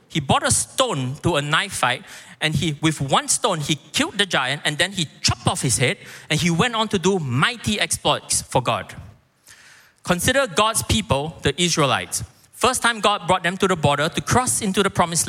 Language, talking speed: English, 205 wpm